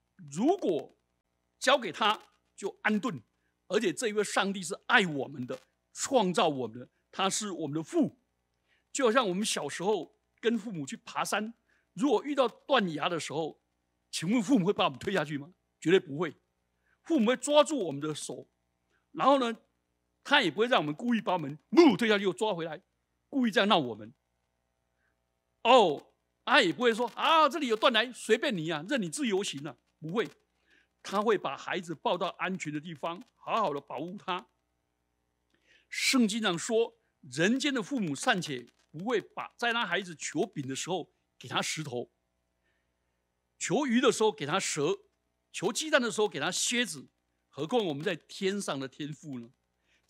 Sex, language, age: male, Chinese, 60-79